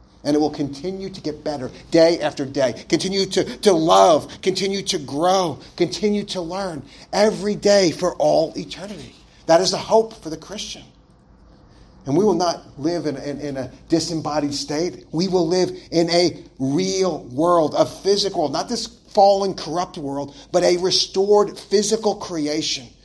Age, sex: 40-59, male